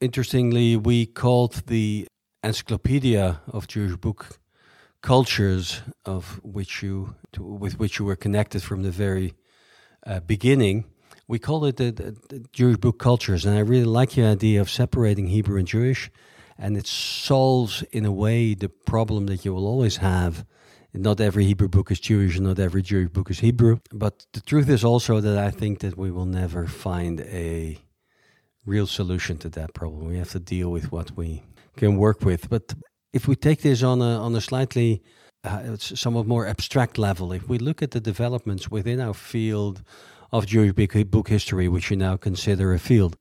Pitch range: 95-120 Hz